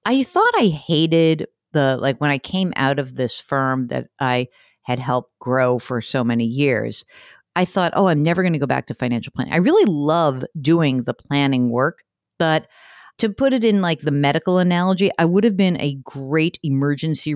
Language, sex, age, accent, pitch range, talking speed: English, female, 50-69, American, 135-180 Hz, 195 wpm